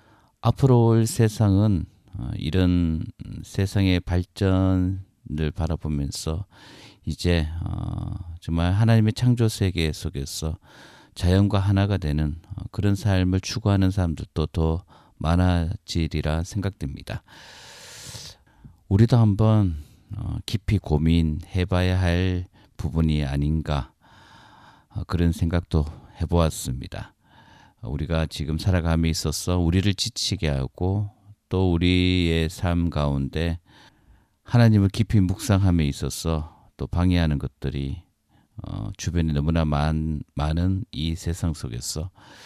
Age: 40-59